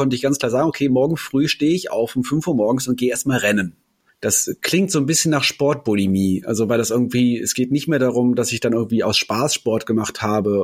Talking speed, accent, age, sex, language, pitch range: 250 wpm, German, 30-49, male, German, 115-135 Hz